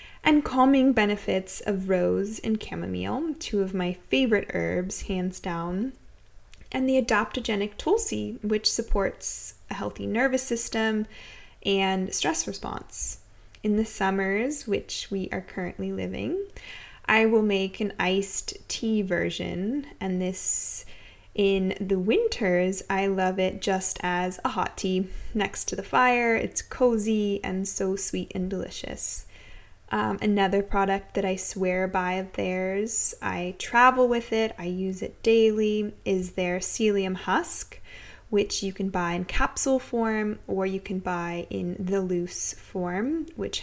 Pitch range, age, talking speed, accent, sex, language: 190-230 Hz, 20-39, 140 wpm, American, female, English